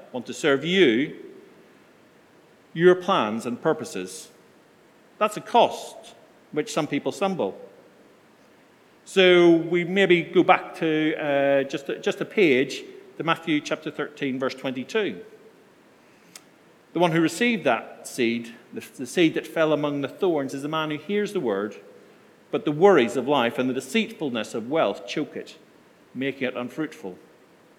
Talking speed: 150 wpm